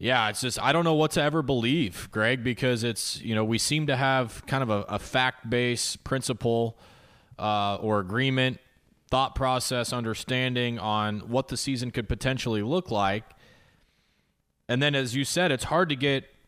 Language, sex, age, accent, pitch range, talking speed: English, male, 20-39, American, 110-135 Hz, 175 wpm